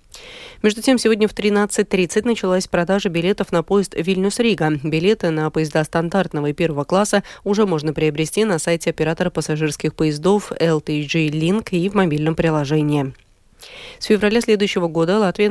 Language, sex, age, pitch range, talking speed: Russian, female, 30-49, 155-195 Hz, 145 wpm